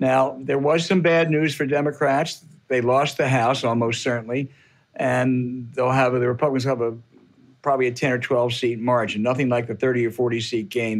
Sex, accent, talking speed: male, American, 195 wpm